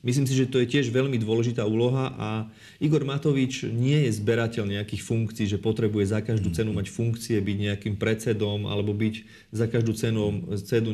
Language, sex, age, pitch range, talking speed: Slovak, male, 40-59, 110-130 Hz, 180 wpm